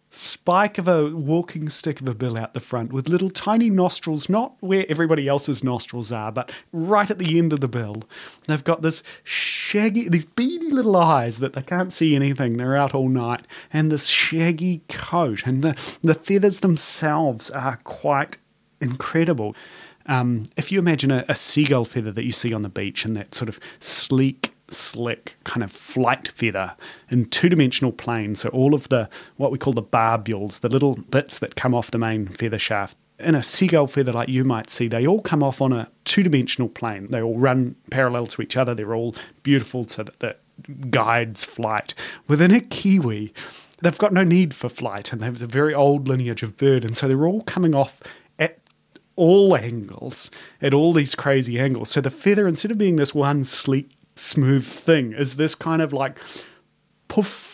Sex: male